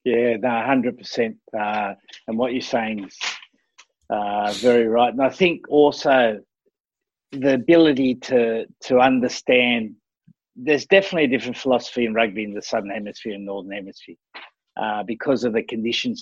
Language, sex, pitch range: English, male, 110-130 Hz